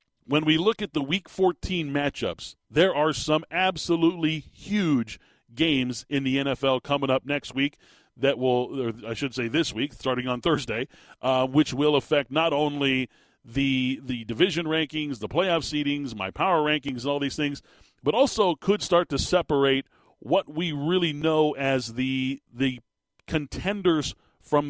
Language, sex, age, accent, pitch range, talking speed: English, male, 40-59, American, 135-175 Hz, 160 wpm